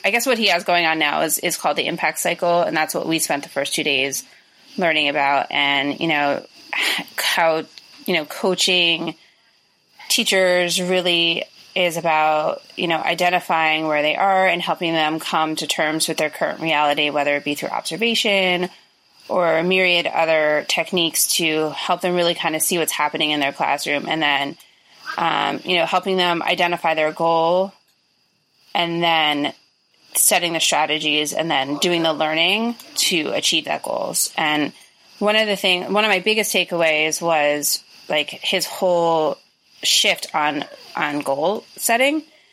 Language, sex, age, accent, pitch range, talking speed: English, female, 20-39, American, 155-180 Hz, 165 wpm